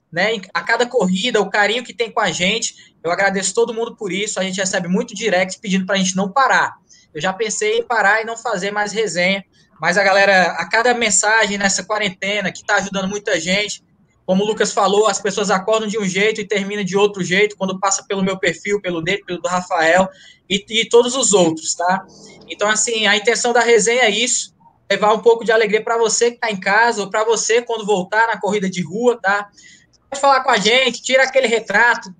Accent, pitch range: Brazilian, 195-230 Hz